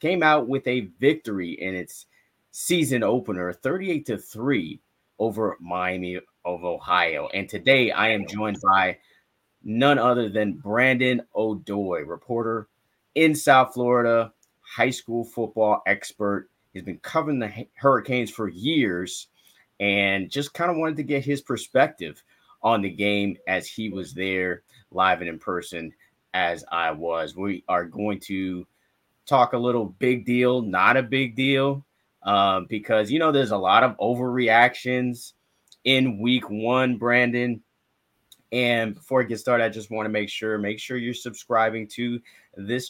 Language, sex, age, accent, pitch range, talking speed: English, male, 30-49, American, 100-125 Hz, 150 wpm